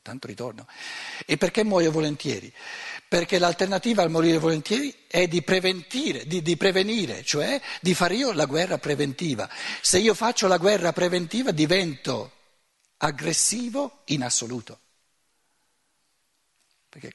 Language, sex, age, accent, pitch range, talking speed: Italian, male, 60-79, native, 150-205 Hz, 120 wpm